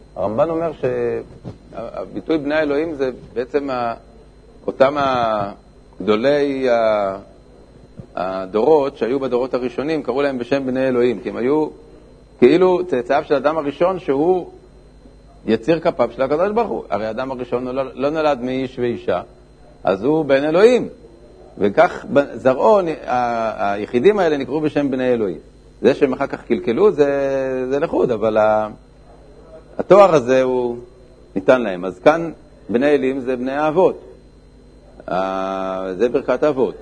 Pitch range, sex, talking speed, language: 120-155 Hz, male, 130 wpm, Hebrew